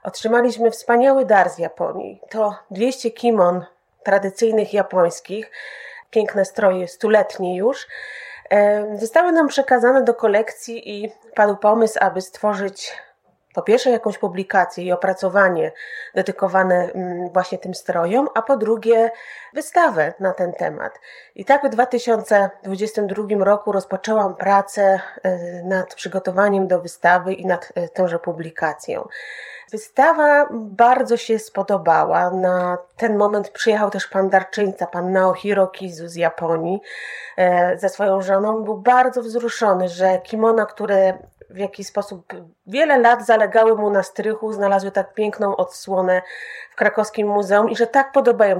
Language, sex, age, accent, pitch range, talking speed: Polish, female, 30-49, native, 190-230 Hz, 125 wpm